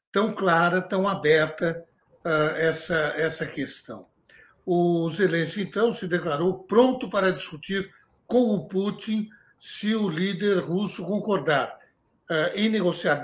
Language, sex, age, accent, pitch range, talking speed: Portuguese, male, 60-79, Brazilian, 165-200 Hz, 115 wpm